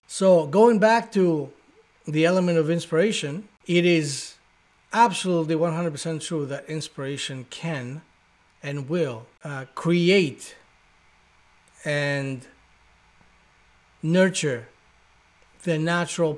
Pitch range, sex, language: 130-170 Hz, male, English